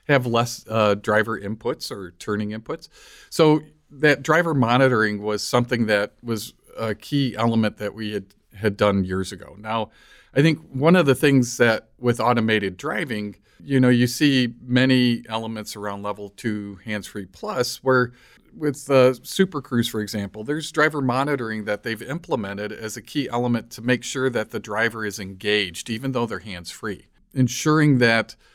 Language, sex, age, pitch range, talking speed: English, male, 50-69, 105-130 Hz, 165 wpm